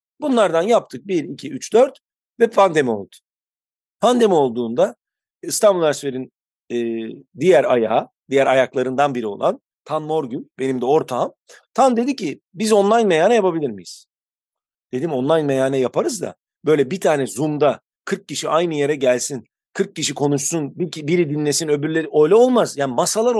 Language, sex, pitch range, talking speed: Turkish, male, 140-220 Hz, 145 wpm